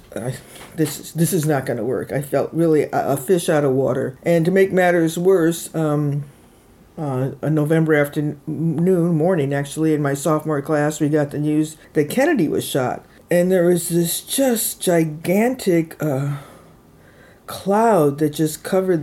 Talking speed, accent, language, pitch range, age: 165 wpm, American, English, 145-175 Hz, 50-69